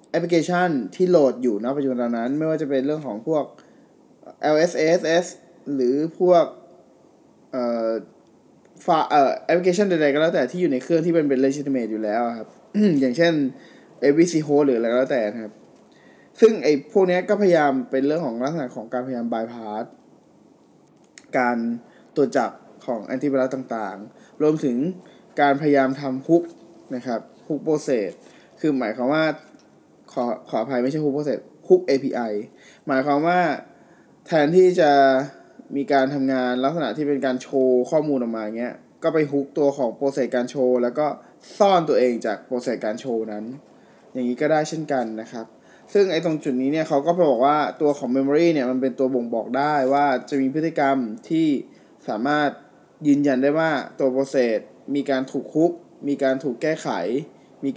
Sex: male